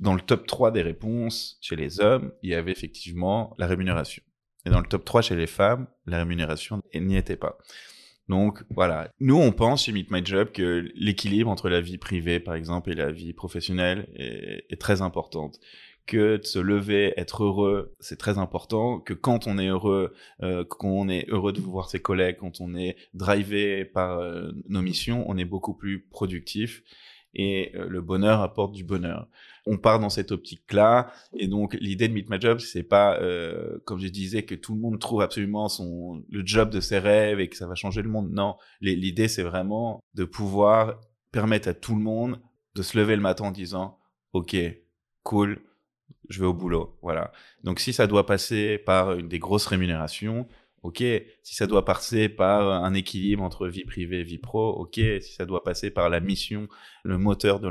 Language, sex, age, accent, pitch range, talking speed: French, male, 20-39, French, 90-105 Hz, 200 wpm